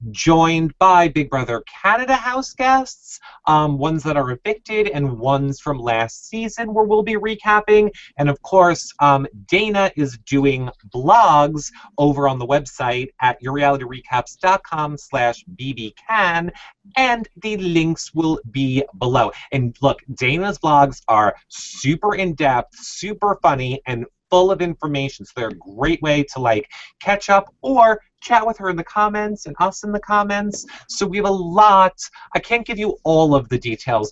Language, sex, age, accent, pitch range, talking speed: English, male, 30-49, American, 125-195 Hz, 160 wpm